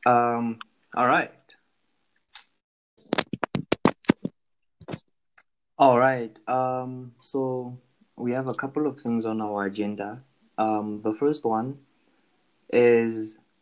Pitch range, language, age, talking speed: 105-125 Hz, English, 20-39, 95 wpm